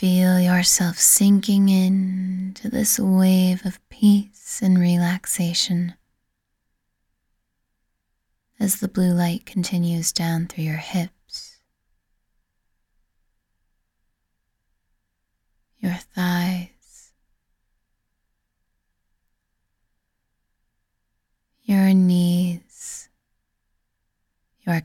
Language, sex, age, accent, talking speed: English, female, 20-39, American, 60 wpm